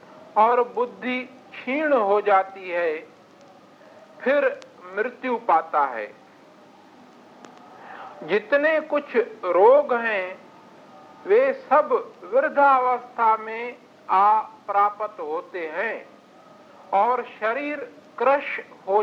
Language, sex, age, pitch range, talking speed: Hindi, male, 50-69, 210-285 Hz, 80 wpm